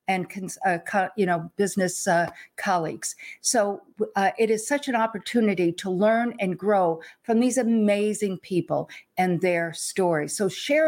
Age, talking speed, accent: 50-69, 150 wpm, American